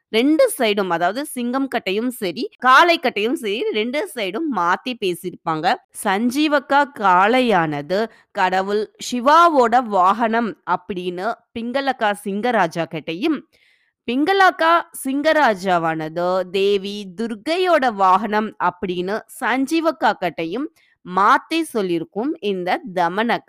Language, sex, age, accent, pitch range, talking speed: Tamil, female, 20-39, native, 185-280 Hz, 75 wpm